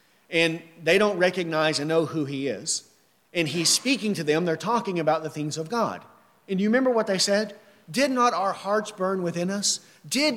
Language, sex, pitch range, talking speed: English, male, 185-240 Hz, 205 wpm